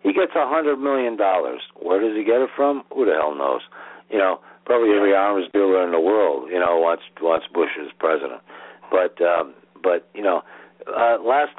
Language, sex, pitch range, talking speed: English, male, 95-160 Hz, 200 wpm